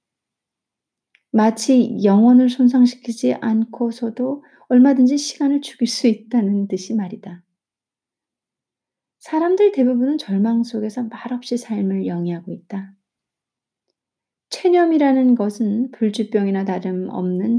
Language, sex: Korean, female